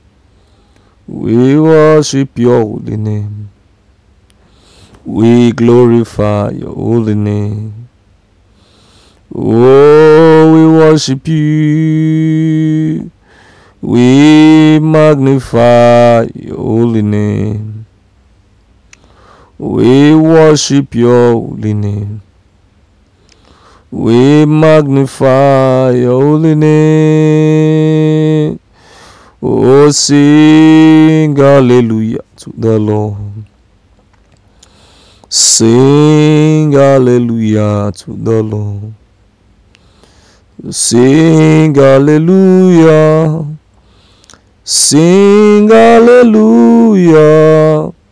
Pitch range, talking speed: 105-155 Hz, 55 wpm